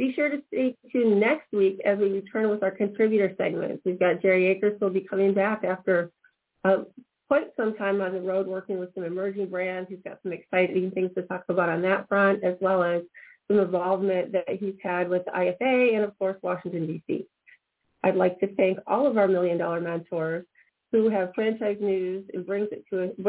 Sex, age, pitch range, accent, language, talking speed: female, 30-49, 185-220 Hz, American, English, 210 wpm